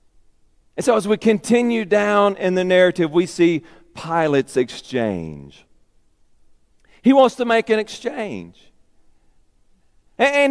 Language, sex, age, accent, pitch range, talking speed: English, male, 40-59, American, 150-190 Hz, 115 wpm